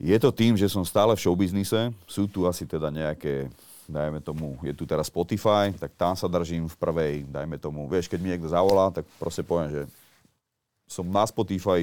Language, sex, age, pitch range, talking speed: Slovak, male, 30-49, 75-95 Hz, 200 wpm